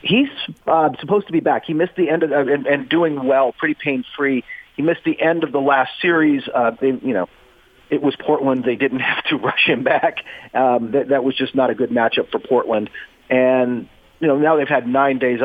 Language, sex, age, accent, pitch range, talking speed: English, male, 40-59, American, 120-145 Hz, 230 wpm